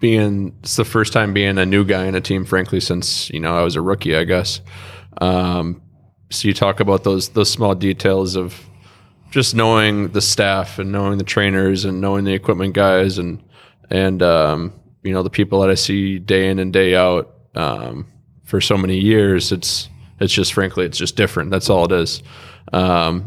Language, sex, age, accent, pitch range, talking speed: English, male, 20-39, American, 95-105 Hz, 200 wpm